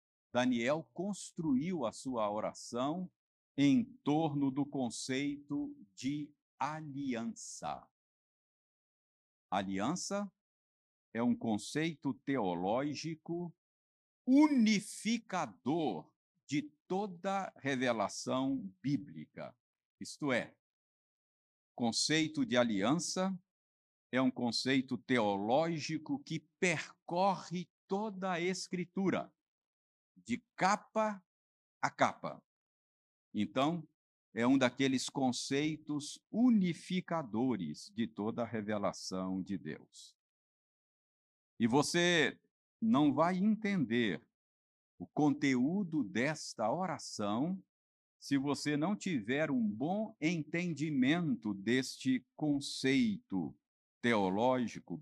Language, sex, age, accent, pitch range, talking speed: Portuguese, male, 50-69, Brazilian, 115-180 Hz, 75 wpm